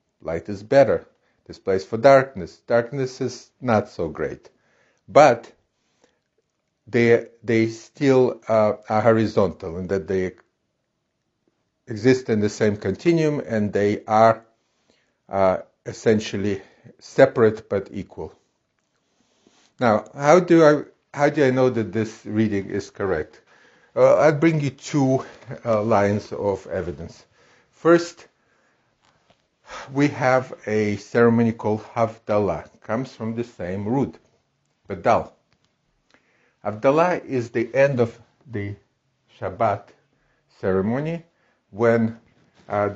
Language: English